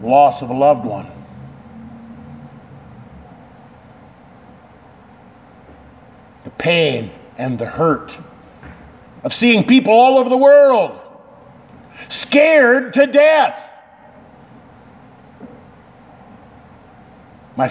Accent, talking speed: American, 70 wpm